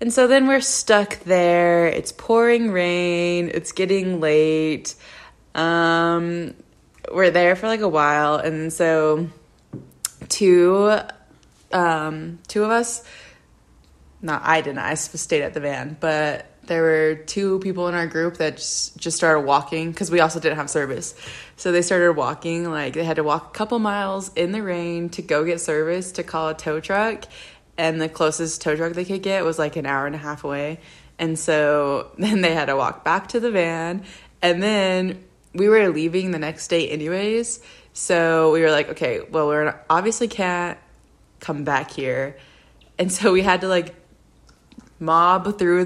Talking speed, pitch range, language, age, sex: 175 wpm, 155-185 Hz, English, 20-39, female